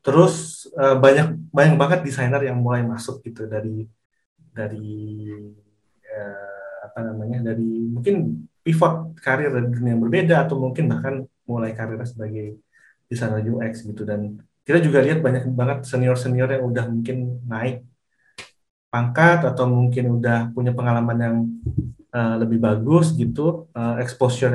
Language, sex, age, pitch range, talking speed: Indonesian, male, 30-49, 115-135 Hz, 135 wpm